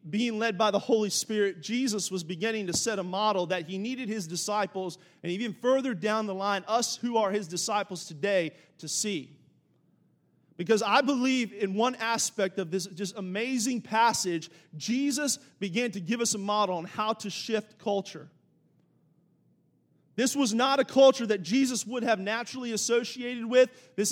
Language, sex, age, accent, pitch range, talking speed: English, male, 30-49, American, 185-235 Hz, 170 wpm